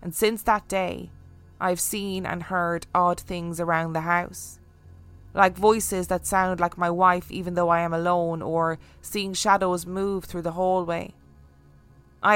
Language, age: English, 20-39